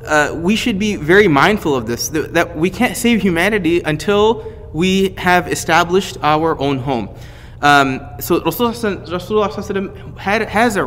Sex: male